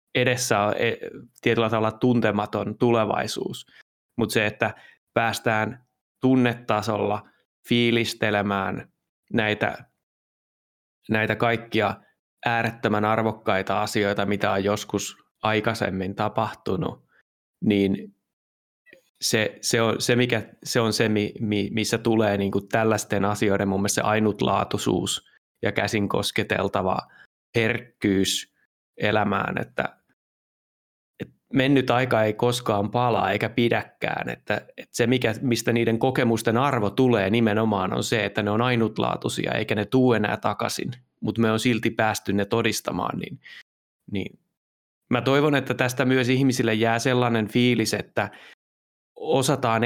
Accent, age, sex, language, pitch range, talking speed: native, 20-39, male, Finnish, 105-120 Hz, 110 wpm